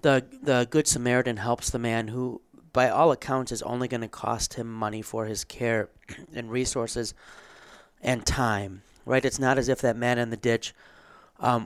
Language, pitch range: English, 115-135 Hz